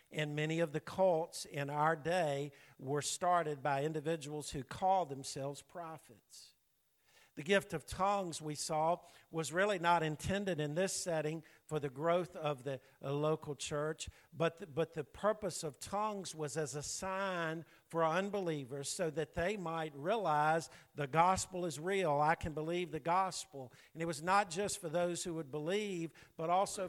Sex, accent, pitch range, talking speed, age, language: male, American, 145-170 Hz, 165 wpm, 50-69, English